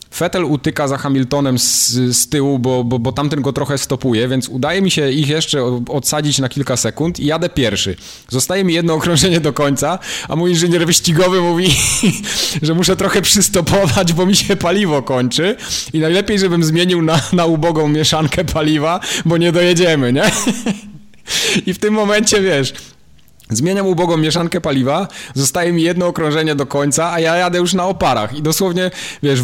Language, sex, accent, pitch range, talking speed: Polish, male, native, 120-170 Hz, 170 wpm